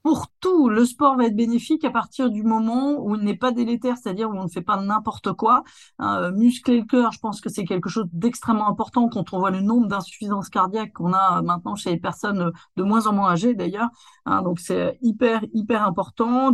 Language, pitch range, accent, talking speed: French, 200-240 Hz, French, 220 wpm